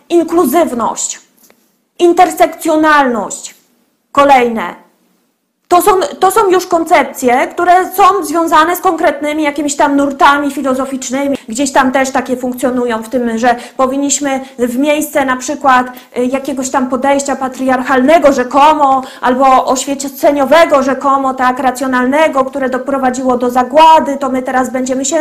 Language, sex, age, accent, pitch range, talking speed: Polish, female, 20-39, native, 260-330 Hz, 120 wpm